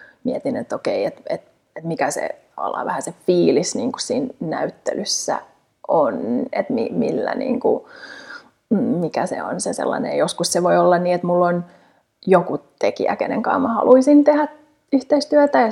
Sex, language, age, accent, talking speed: female, Finnish, 30-49, native, 170 wpm